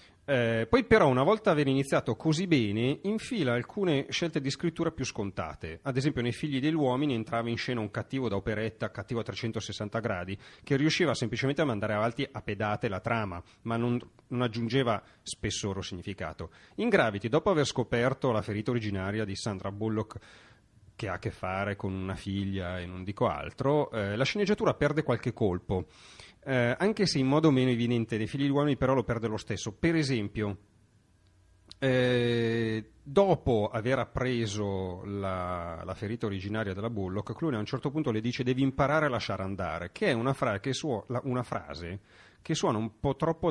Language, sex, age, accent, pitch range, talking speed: Italian, male, 30-49, native, 105-135 Hz, 180 wpm